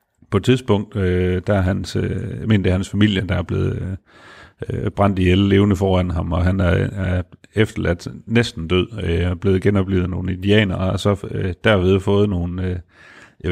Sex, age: male, 40-59